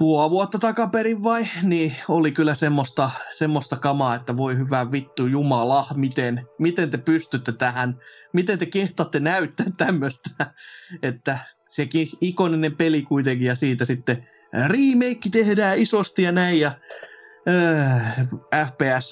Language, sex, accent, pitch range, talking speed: Finnish, male, native, 140-205 Hz, 130 wpm